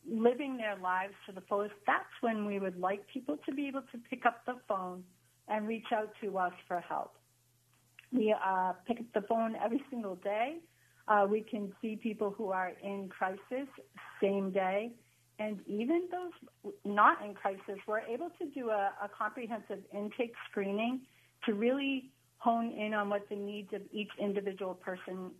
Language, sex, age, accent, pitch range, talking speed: English, female, 50-69, American, 190-230 Hz, 175 wpm